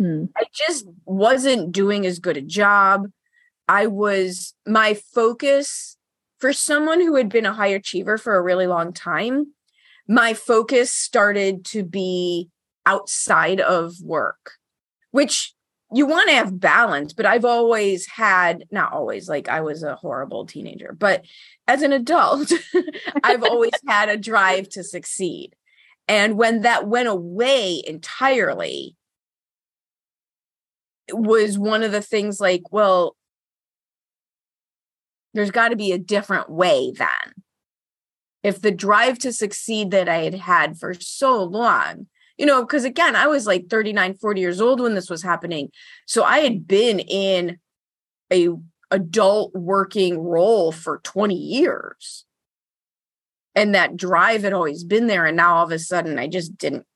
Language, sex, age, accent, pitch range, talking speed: English, female, 30-49, American, 180-240 Hz, 145 wpm